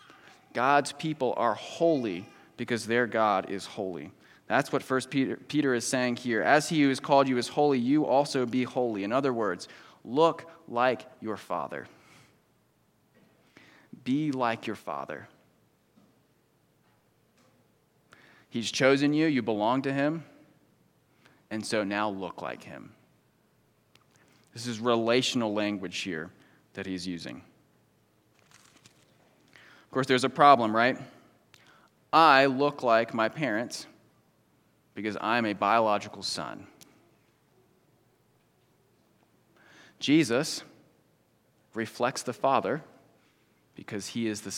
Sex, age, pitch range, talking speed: male, 30-49, 110-135 Hz, 115 wpm